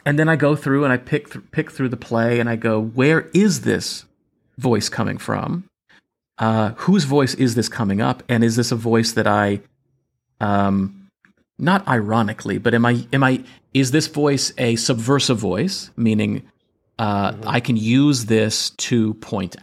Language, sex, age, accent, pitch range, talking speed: English, male, 30-49, American, 105-135 Hz, 175 wpm